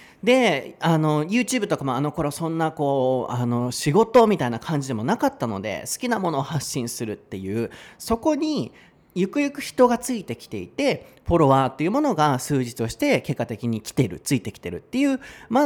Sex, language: male, Japanese